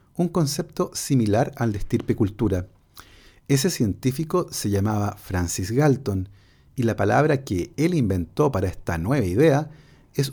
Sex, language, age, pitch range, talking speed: male, Spanish, 40-59, 105-145 Hz, 135 wpm